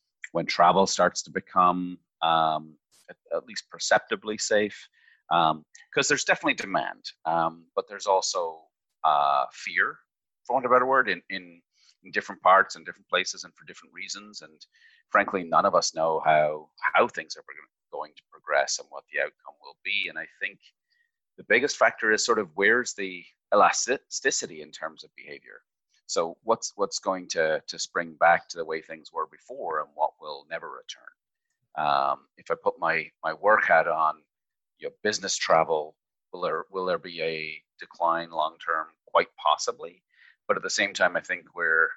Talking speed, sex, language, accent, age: 175 wpm, male, English, Canadian, 30-49